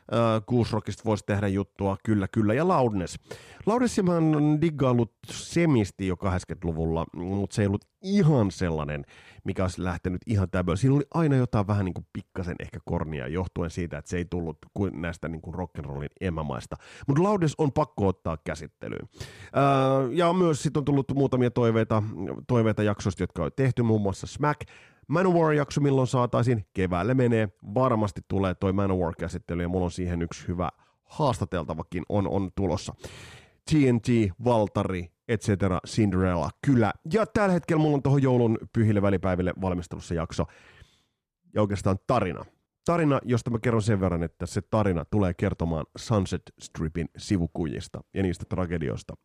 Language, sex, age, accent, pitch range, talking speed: Finnish, male, 30-49, native, 90-130 Hz, 155 wpm